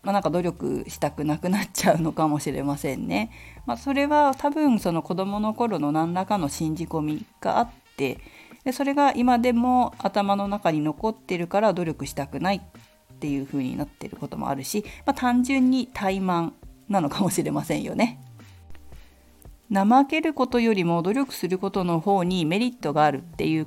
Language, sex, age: Japanese, female, 40-59